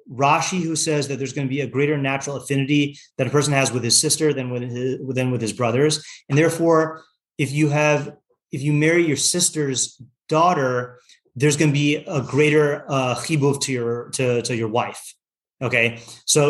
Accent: American